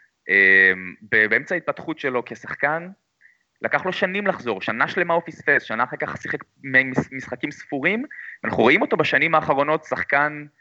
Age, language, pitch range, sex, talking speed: 20-39, Hebrew, 120-180 Hz, male, 145 wpm